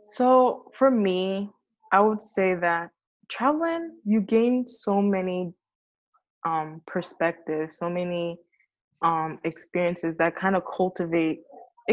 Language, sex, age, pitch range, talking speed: English, female, 10-29, 165-205 Hz, 110 wpm